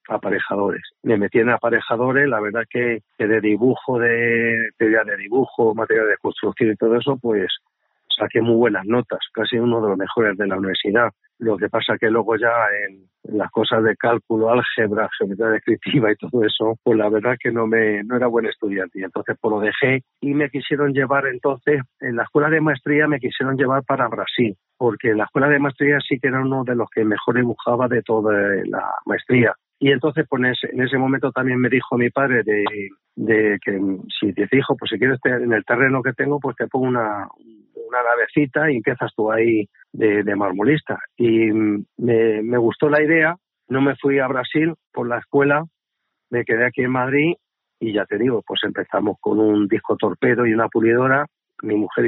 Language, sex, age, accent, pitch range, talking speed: Spanish, male, 50-69, Spanish, 110-140 Hz, 205 wpm